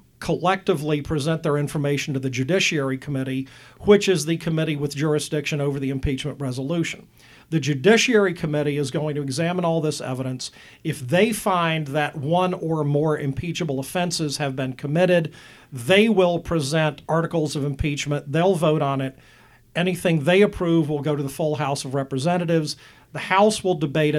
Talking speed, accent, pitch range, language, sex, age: 160 wpm, American, 140-170 Hz, English, male, 50-69